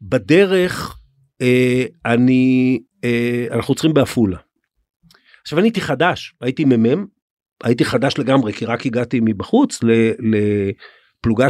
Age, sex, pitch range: 50-69, male, 115-145 Hz